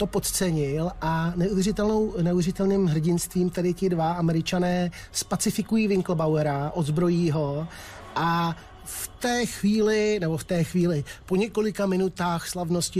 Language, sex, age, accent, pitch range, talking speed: Czech, male, 30-49, native, 155-185 Hz, 115 wpm